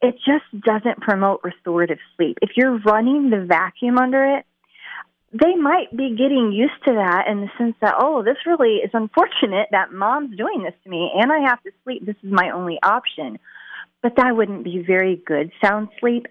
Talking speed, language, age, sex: 195 wpm, English, 30-49, female